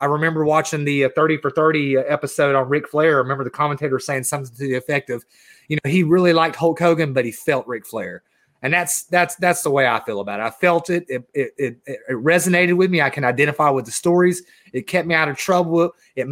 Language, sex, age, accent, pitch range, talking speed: English, male, 30-49, American, 140-170 Hz, 240 wpm